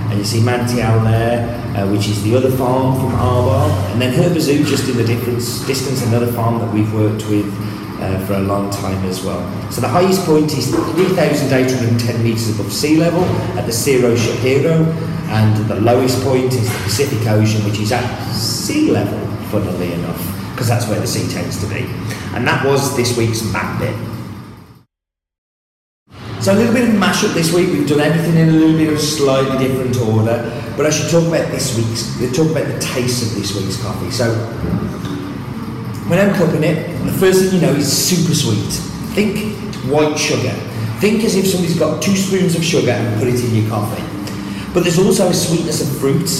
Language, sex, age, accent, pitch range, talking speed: English, male, 30-49, British, 110-150 Hz, 195 wpm